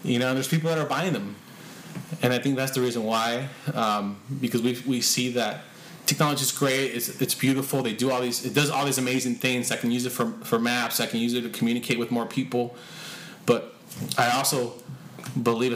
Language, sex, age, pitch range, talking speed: English, male, 20-39, 120-160 Hz, 215 wpm